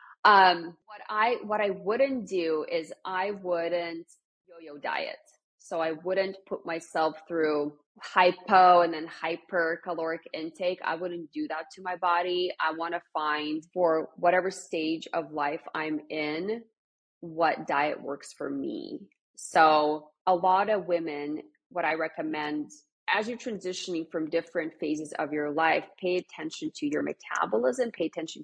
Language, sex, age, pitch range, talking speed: English, female, 20-39, 160-195 Hz, 150 wpm